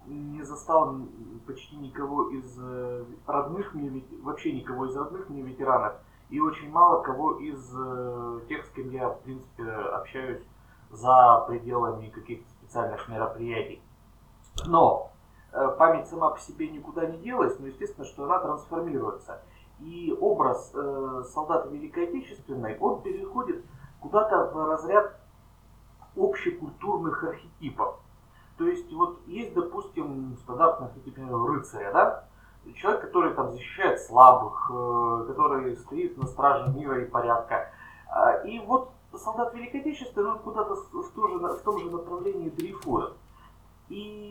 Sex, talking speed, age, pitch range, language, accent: male, 130 wpm, 30-49, 125-210 Hz, Russian, native